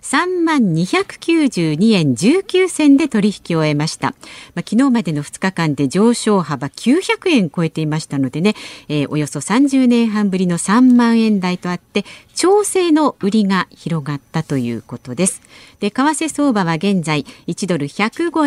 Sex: female